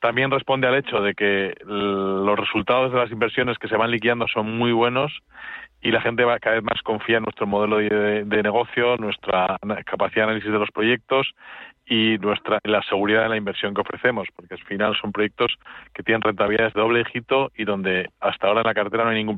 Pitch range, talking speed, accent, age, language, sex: 100-115 Hz, 210 wpm, Spanish, 40-59, Spanish, male